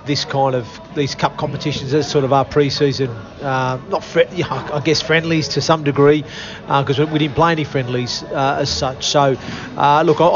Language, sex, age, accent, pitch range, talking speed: English, male, 40-59, Australian, 140-155 Hz, 180 wpm